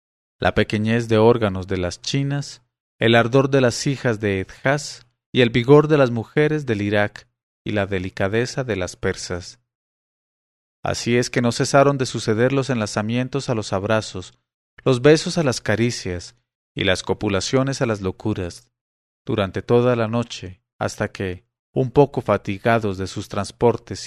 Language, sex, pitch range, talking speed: English, male, 100-130 Hz, 155 wpm